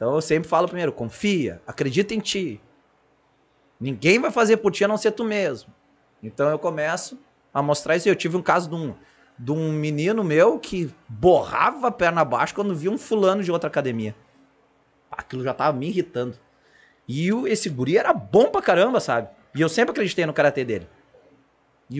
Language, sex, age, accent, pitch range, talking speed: Portuguese, male, 20-39, Brazilian, 145-205 Hz, 185 wpm